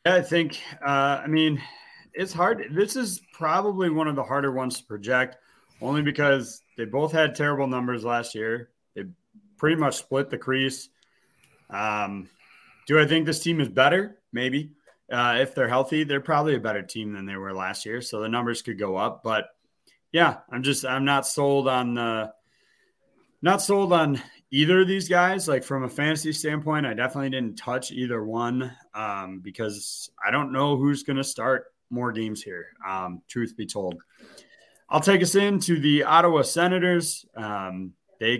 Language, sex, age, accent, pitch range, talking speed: English, male, 30-49, American, 120-155 Hz, 180 wpm